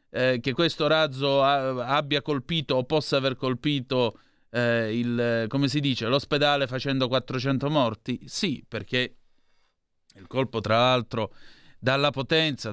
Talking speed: 120 wpm